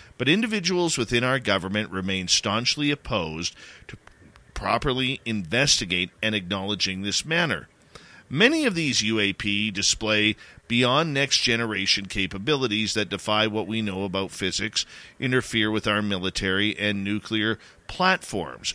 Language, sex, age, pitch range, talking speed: English, male, 40-59, 100-125 Hz, 120 wpm